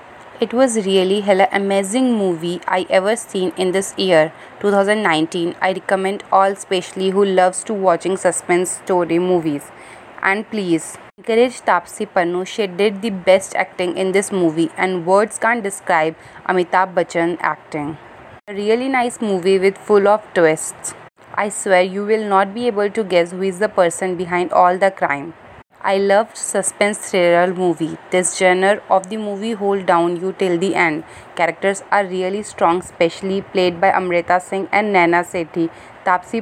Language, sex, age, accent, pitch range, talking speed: English, female, 30-49, Indian, 175-200 Hz, 160 wpm